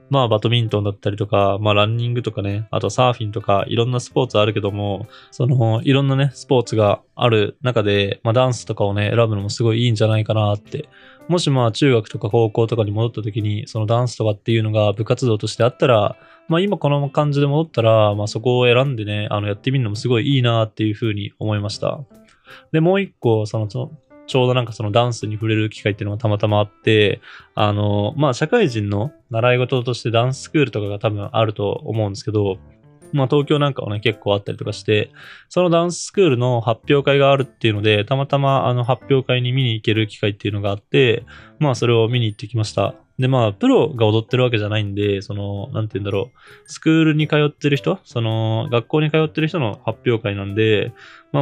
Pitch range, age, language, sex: 105-135 Hz, 20-39, Japanese, male